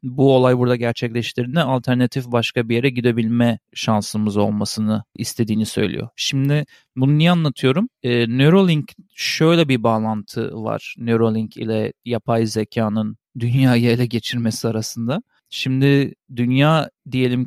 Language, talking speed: Turkish, 115 wpm